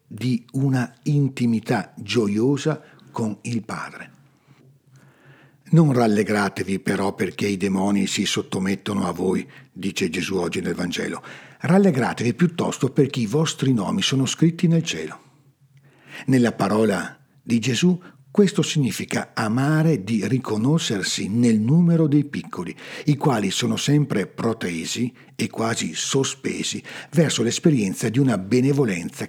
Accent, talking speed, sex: native, 120 wpm, male